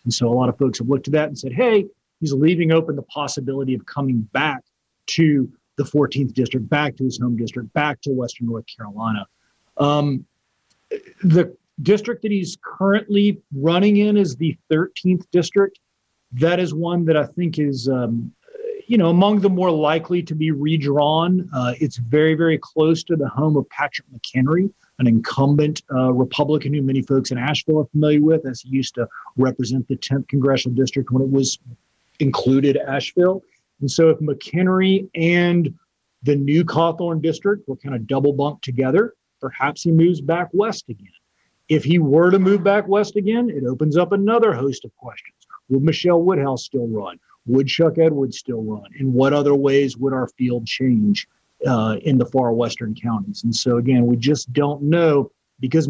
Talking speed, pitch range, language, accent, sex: 180 wpm, 130-170 Hz, English, American, male